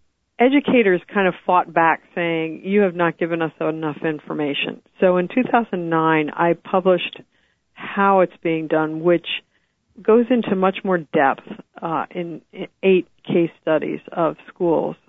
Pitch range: 165-195 Hz